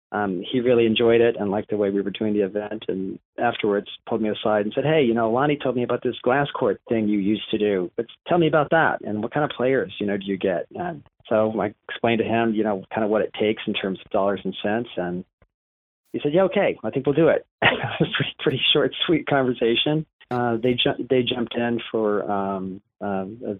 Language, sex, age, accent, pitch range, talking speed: English, male, 40-59, American, 100-120 Hz, 245 wpm